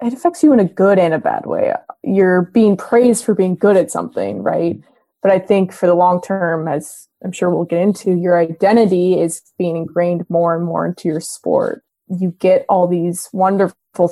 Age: 20-39